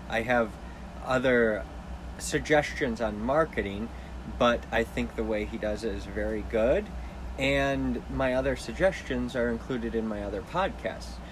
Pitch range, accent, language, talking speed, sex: 100-120 Hz, American, English, 145 wpm, male